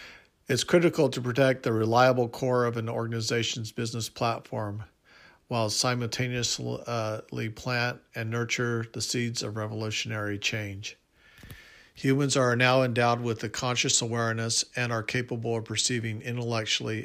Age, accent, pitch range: 50-69, American, 110-125 Hz